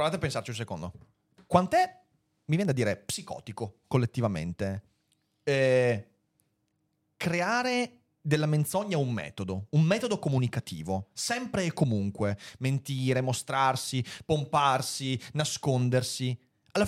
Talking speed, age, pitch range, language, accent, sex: 105 wpm, 30-49, 115-155 Hz, Italian, native, male